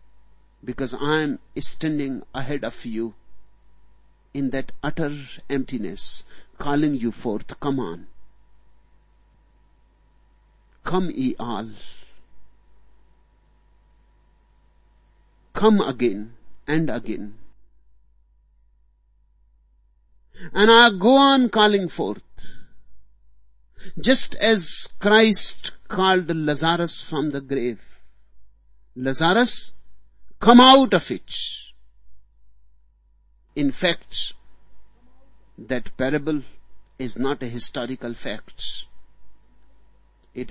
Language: Hindi